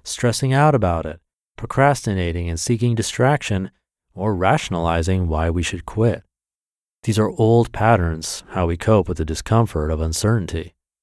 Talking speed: 140 wpm